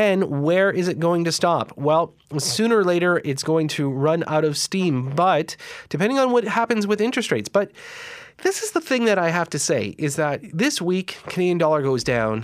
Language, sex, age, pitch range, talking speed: English, male, 30-49, 150-195 Hz, 210 wpm